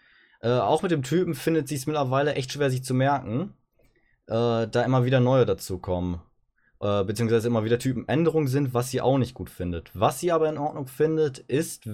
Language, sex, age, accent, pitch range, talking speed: German, male, 20-39, German, 115-140 Hz, 190 wpm